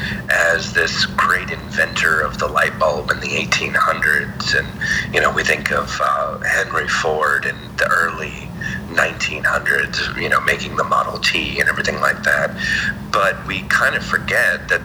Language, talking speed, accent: English, 160 wpm, American